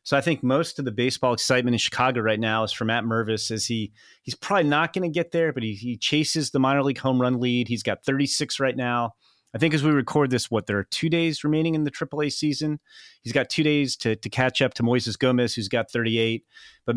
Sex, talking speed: male, 255 wpm